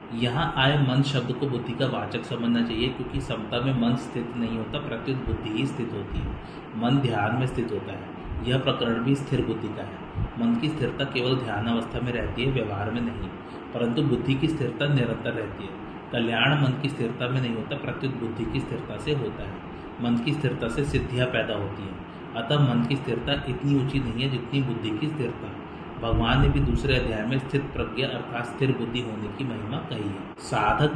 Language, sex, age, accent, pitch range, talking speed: Hindi, male, 30-49, native, 115-135 Hz, 205 wpm